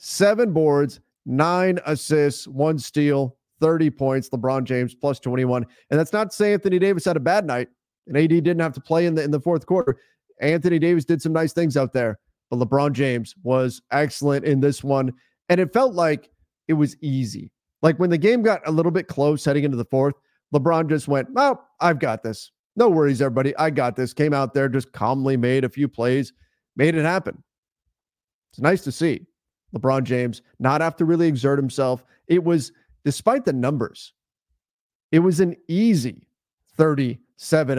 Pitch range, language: 130-160 Hz, English